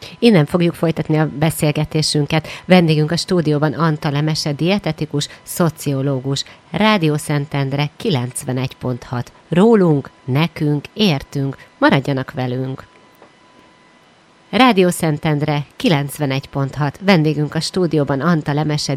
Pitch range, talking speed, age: 145-165 Hz, 90 wpm, 30-49